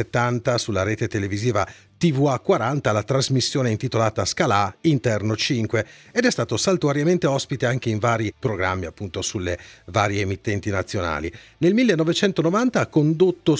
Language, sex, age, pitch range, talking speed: Italian, male, 40-59, 105-165 Hz, 130 wpm